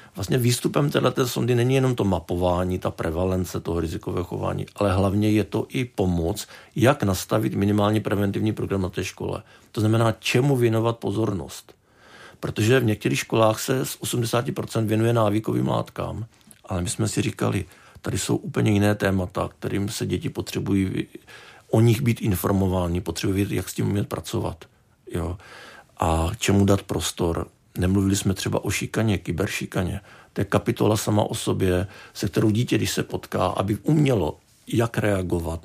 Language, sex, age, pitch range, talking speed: Czech, male, 50-69, 95-115 Hz, 155 wpm